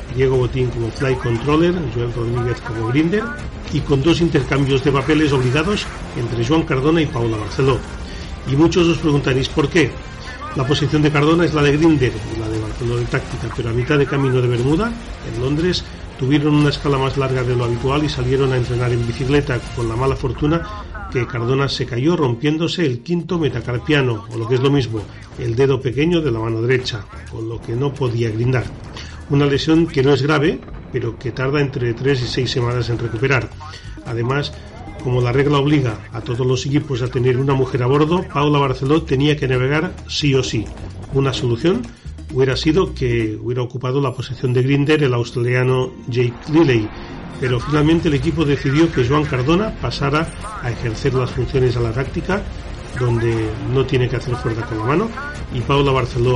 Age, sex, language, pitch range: 40-59, male, Spanish, 120-145 Hz